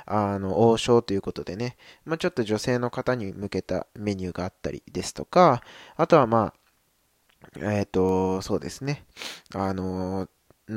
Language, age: Japanese, 20-39